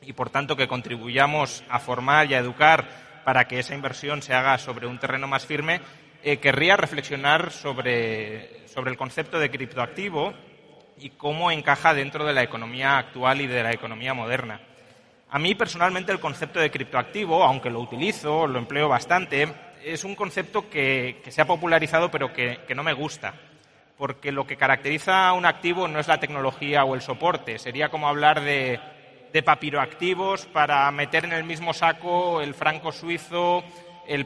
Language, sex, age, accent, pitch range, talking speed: Spanish, male, 30-49, Spanish, 135-170 Hz, 175 wpm